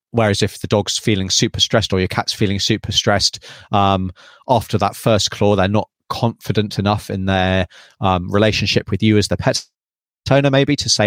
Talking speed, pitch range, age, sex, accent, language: 190 wpm, 95-115 Hz, 30-49, male, British, English